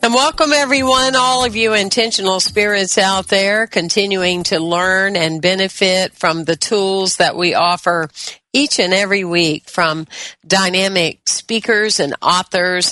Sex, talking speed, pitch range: female, 140 wpm, 165-200 Hz